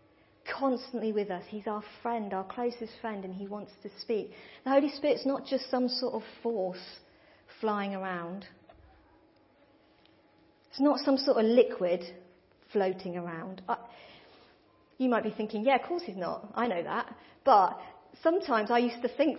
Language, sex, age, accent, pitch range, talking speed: English, female, 40-59, British, 215-290 Hz, 160 wpm